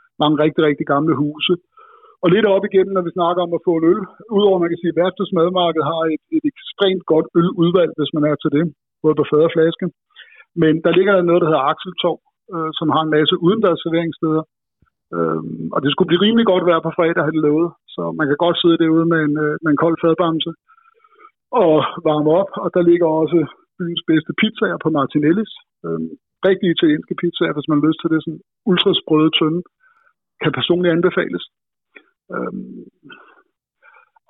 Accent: native